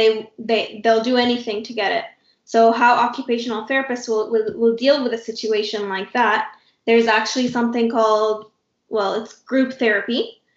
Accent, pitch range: American, 220-245 Hz